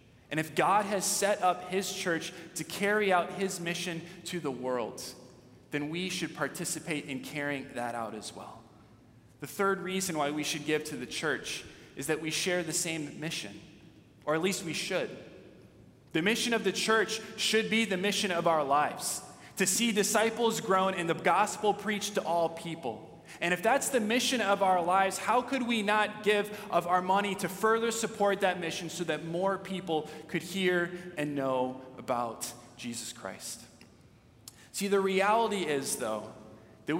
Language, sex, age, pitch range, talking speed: English, male, 20-39, 140-190 Hz, 175 wpm